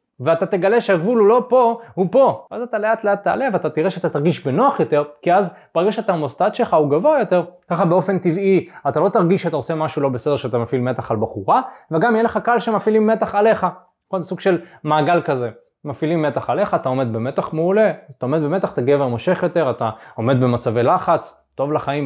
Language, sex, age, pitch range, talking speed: Hebrew, male, 20-39, 120-185 Hz, 205 wpm